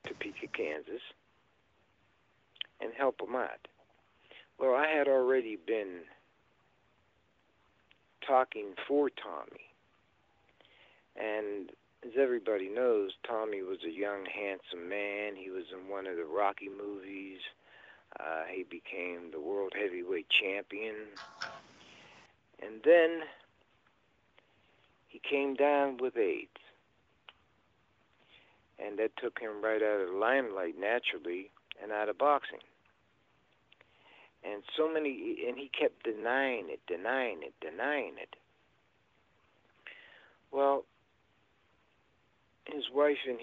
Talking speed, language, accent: 105 wpm, English, American